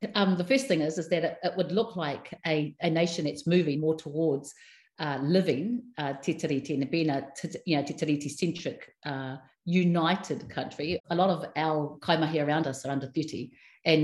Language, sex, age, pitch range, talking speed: English, female, 50-69, 145-180 Hz, 190 wpm